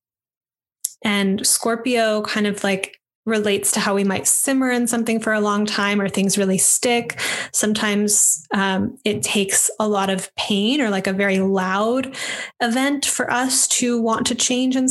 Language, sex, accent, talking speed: English, female, American, 170 wpm